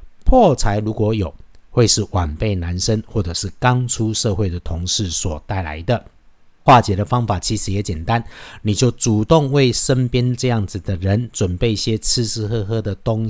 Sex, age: male, 50-69